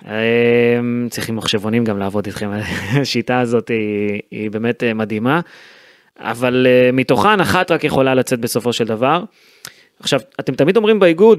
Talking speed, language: 130 wpm, Hebrew